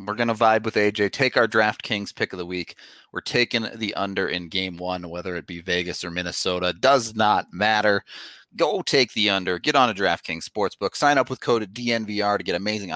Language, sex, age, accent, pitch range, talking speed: English, male, 30-49, American, 95-120 Hz, 215 wpm